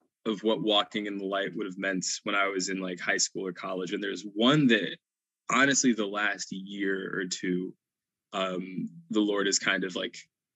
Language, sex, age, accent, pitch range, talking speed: English, male, 20-39, American, 95-120 Hz, 200 wpm